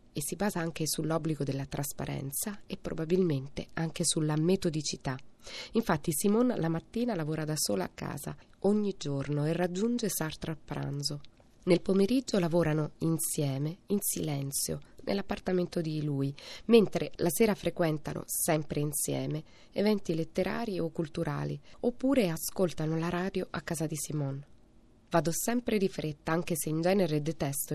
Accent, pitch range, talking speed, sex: native, 145-185 Hz, 140 wpm, female